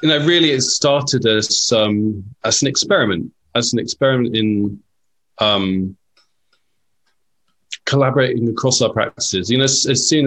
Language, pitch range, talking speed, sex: English, 95-115 Hz, 140 wpm, male